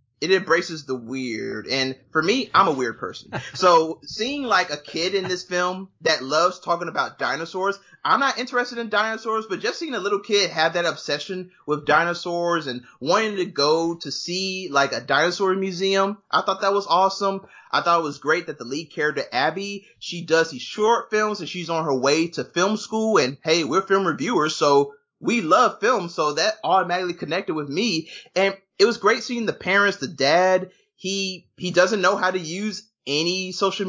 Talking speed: 195 wpm